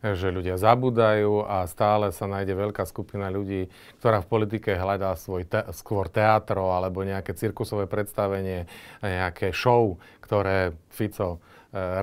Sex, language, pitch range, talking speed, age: male, Slovak, 95-110 Hz, 135 wpm, 40-59